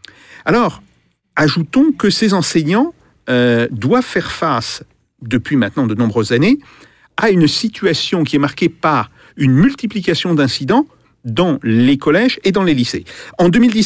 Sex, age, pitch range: male, 50-69, 135-225 Hz